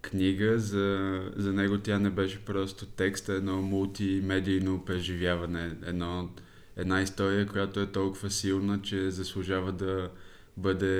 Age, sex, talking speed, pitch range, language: 20-39, male, 125 wpm, 95-100 Hz, Bulgarian